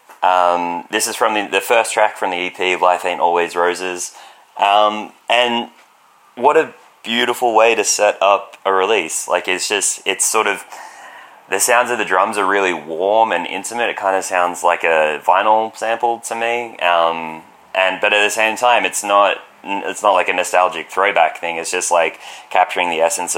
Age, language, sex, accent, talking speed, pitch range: 20-39, English, male, Australian, 190 wpm, 85-100 Hz